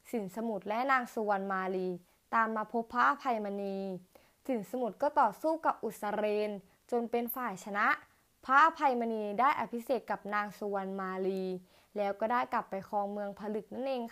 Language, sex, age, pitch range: Thai, female, 20-39, 200-230 Hz